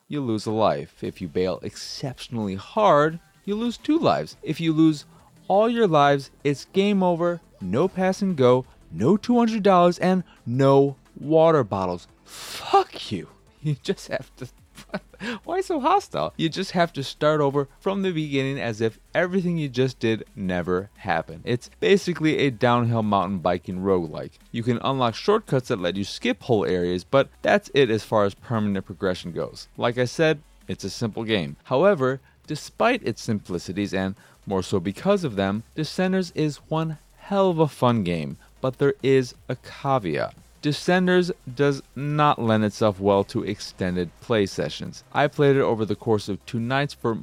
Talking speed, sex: 170 wpm, male